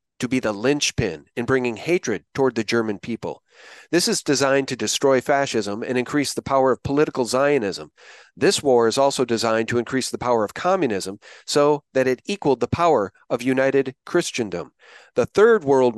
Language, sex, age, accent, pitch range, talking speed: English, male, 40-59, American, 125-160 Hz, 175 wpm